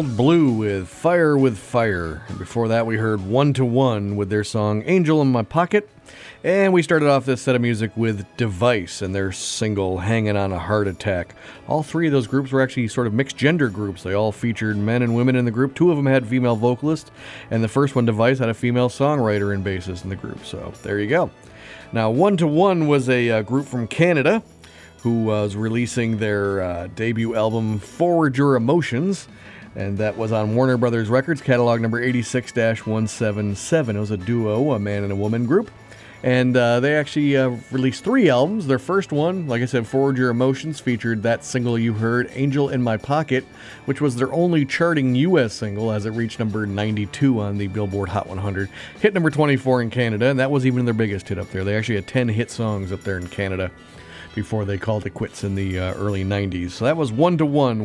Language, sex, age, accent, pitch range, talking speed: English, male, 30-49, American, 105-135 Hz, 215 wpm